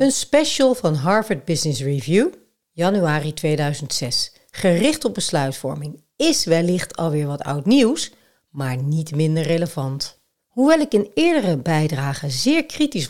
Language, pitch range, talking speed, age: Dutch, 150-215 Hz, 130 wpm, 60-79